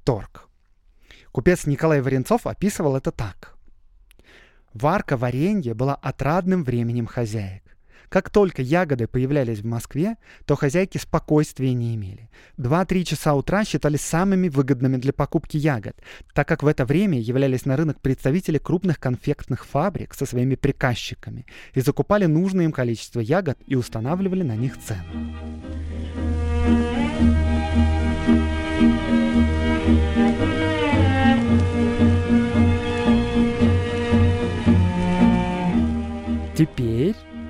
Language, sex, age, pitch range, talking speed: Russian, male, 20-39, 95-150 Hz, 100 wpm